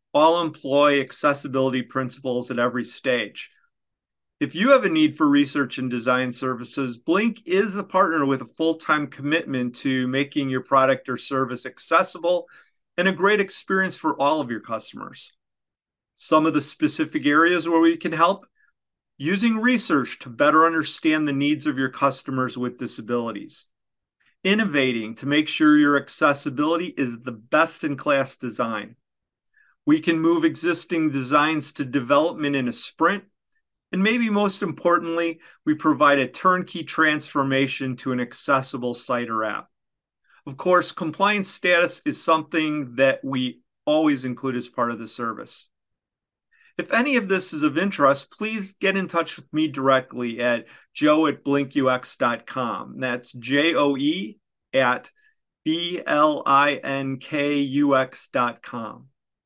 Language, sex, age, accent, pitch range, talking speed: English, male, 40-59, American, 130-175 Hz, 135 wpm